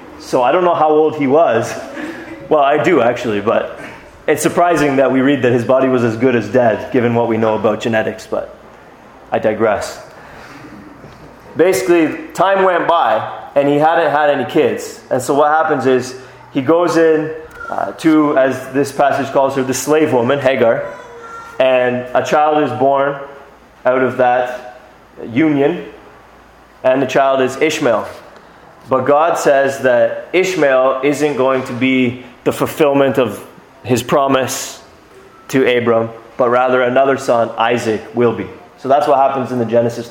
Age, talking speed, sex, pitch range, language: 20-39, 160 wpm, male, 125-150 Hz, English